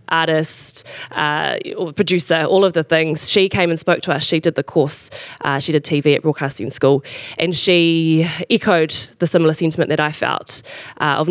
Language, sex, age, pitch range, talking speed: English, female, 20-39, 150-180 Hz, 185 wpm